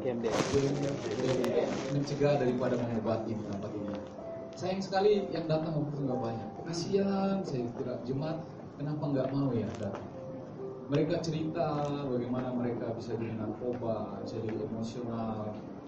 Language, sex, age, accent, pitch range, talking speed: Indonesian, male, 20-39, native, 115-155 Hz, 110 wpm